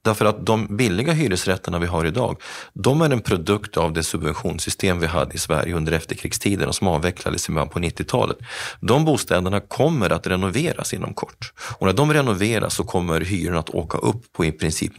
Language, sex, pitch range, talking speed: Swedish, male, 85-115 Hz, 180 wpm